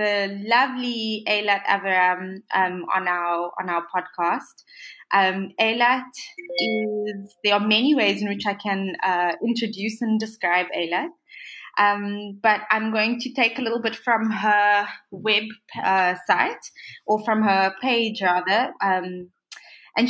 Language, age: English, 20-39